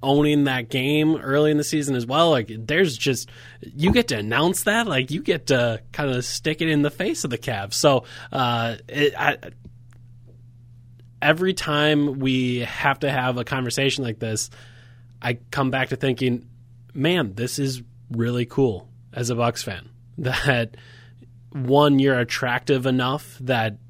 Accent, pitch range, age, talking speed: American, 120-140 Hz, 20-39, 165 wpm